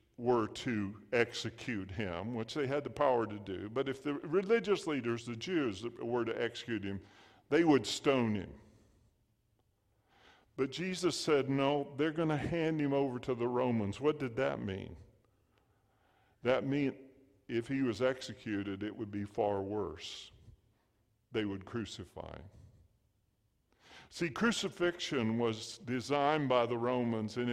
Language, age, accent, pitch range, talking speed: English, 50-69, American, 110-140 Hz, 145 wpm